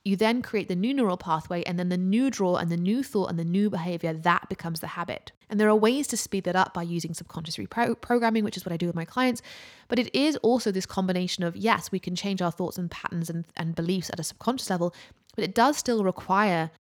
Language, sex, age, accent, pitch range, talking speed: English, female, 20-39, British, 170-220 Hz, 255 wpm